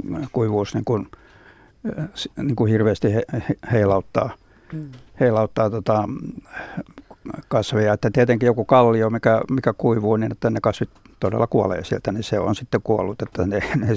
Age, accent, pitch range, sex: 60-79, native, 105-125 Hz, male